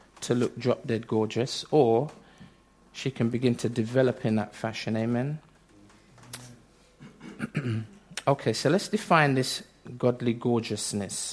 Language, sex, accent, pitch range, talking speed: English, male, British, 120-160 Hz, 110 wpm